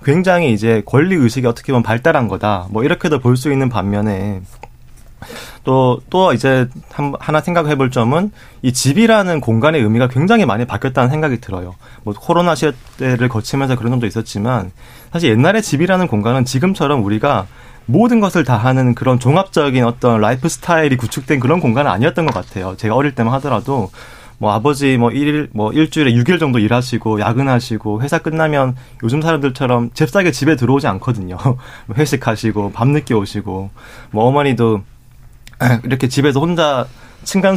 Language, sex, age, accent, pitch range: Korean, male, 30-49, native, 115-150 Hz